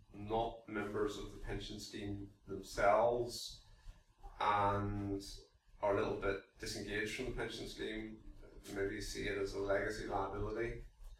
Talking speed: 130 wpm